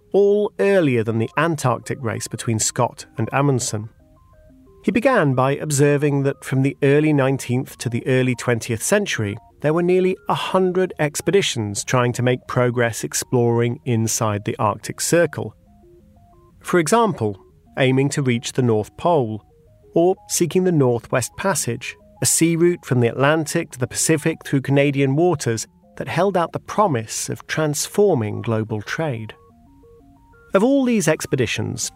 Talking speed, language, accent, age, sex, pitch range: 145 wpm, English, British, 40-59, male, 110-165 Hz